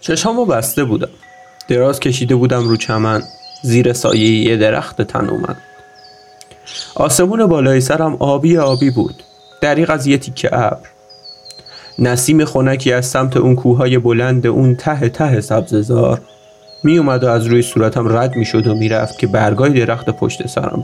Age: 30-49